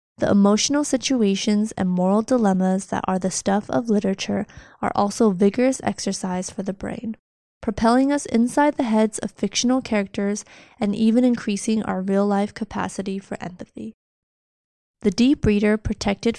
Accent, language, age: American, Chinese, 20-39